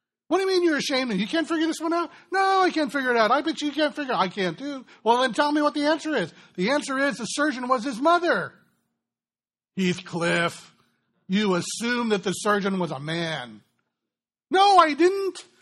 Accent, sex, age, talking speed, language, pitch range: American, male, 60-79, 220 wpm, English, 155-205 Hz